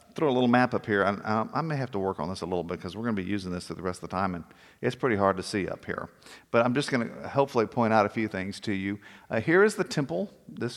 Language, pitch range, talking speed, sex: English, 100-130 Hz, 325 wpm, male